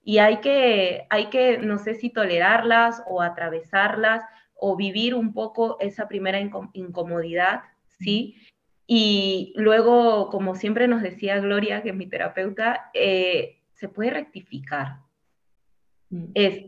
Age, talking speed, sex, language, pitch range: 20-39, 125 wpm, female, Spanish, 190-230 Hz